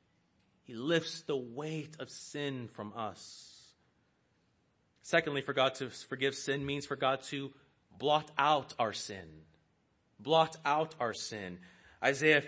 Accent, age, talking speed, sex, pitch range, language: American, 30-49, 130 wpm, male, 120-160 Hz, English